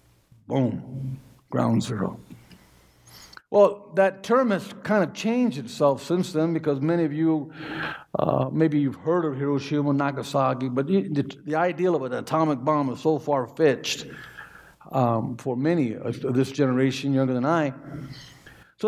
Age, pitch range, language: 60-79, 135-180 Hz, English